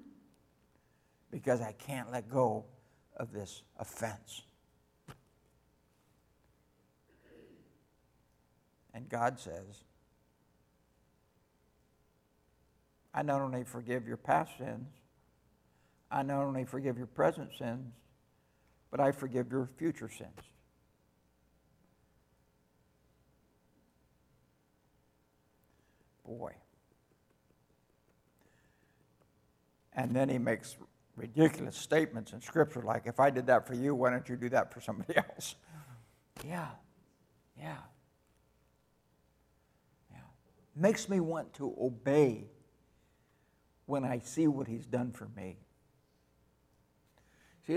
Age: 60-79